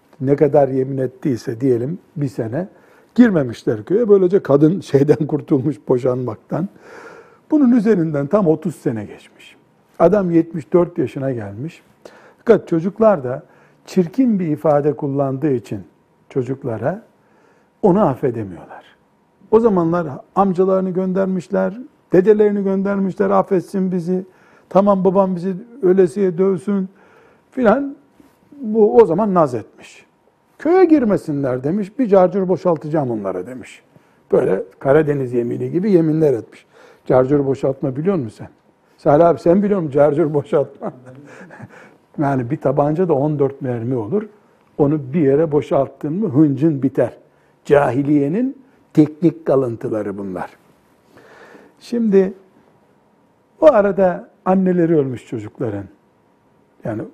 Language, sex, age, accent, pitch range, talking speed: Turkish, male, 60-79, native, 140-195 Hz, 110 wpm